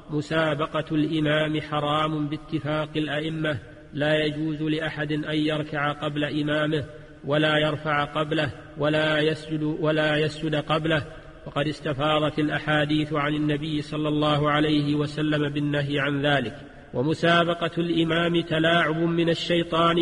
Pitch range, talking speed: 150-155 Hz, 110 wpm